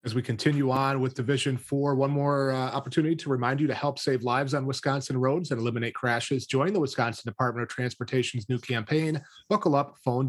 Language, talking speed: English, 205 wpm